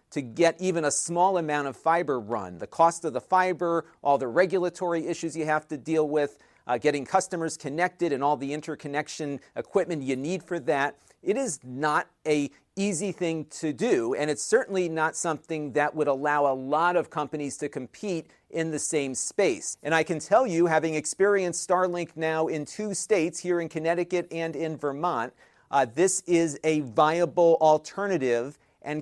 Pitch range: 150-175 Hz